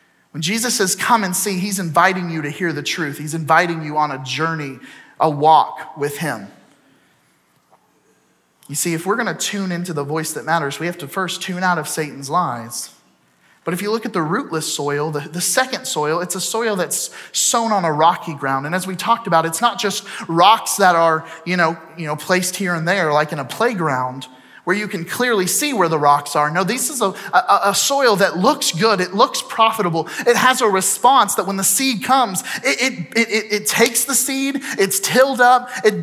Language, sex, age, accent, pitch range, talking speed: English, male, 30-49, American, 160-220 Hz, 215 wpm